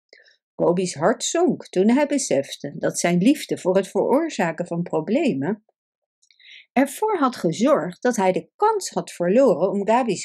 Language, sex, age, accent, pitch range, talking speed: Dutch, female, 50-69, Dutch, 180-265 Hz, 145 wpm